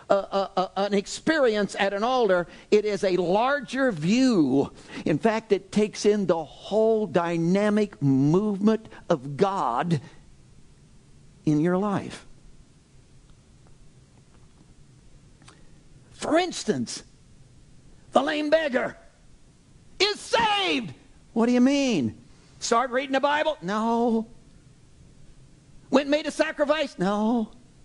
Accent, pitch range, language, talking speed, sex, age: American, 185-275 Hz, English, 105 wpm, male, 50-69